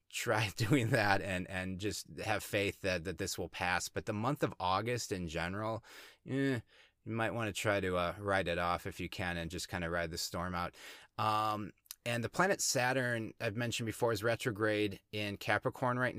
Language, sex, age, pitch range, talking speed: English, male, 30-49, 100-115 Hz, 205 wpm